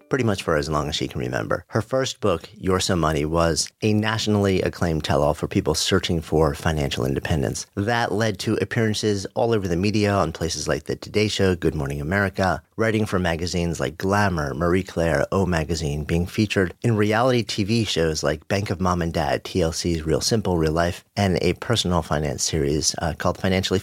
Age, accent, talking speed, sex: 40-59, American, 195 wpm, male